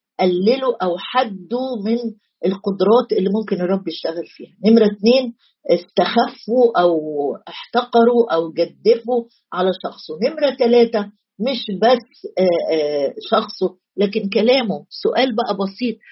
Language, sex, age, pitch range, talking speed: Arabic, female, 50-69, 190-245 Hz, 110 wpm